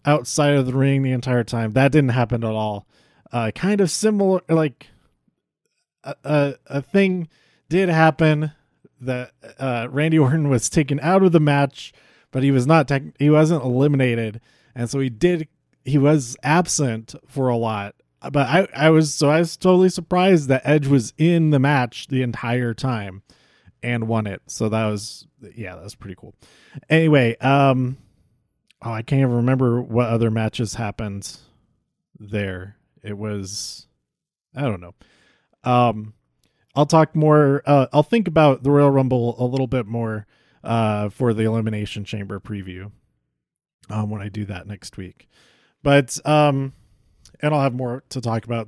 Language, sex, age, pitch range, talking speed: English, male, 20-39, 115-150 Hz, 165 wpm